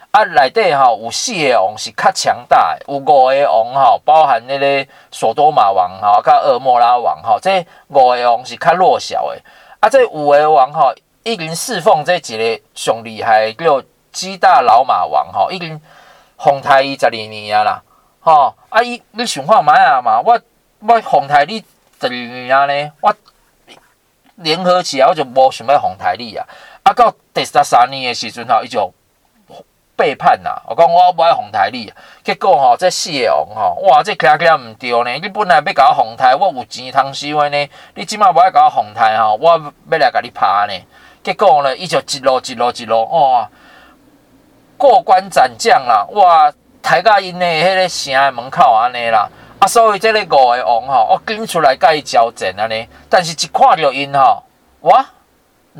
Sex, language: male, Chinese